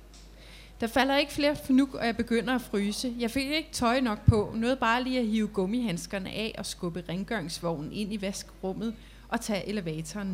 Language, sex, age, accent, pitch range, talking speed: Danish, female, 30-49, native, 190-240 Hz, 185 wpm